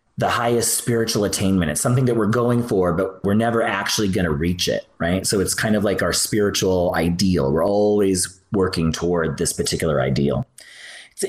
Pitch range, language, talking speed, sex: 90-120 Hz, English, 185 wpm, male